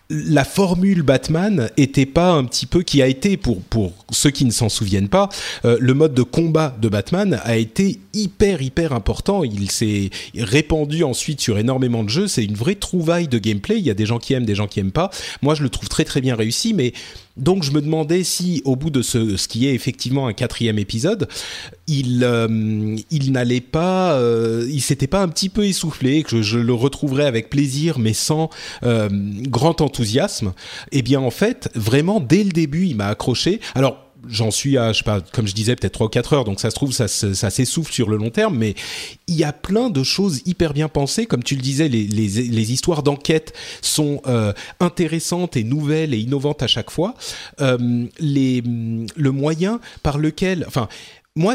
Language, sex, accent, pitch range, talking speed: French, male, French, 115-165 Hz, 210 wpm